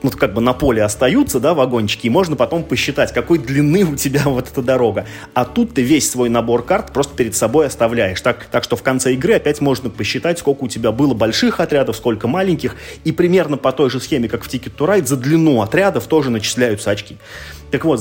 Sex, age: male, 30-49